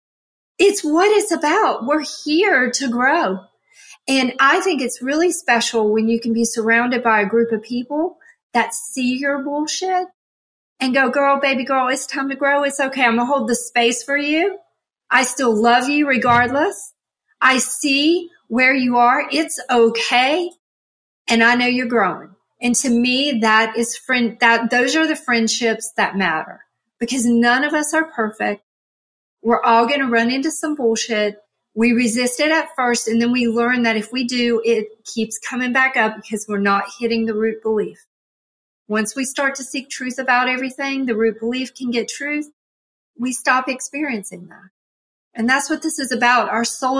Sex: female